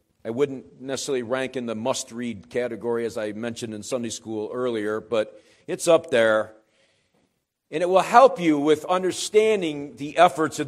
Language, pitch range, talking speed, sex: English, 120-160 Hz, 165 wpm, male